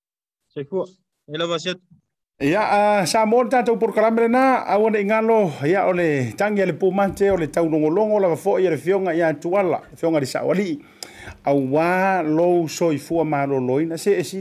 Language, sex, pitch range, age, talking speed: English, male, 150-190 Hz, 50-69, 160 wpm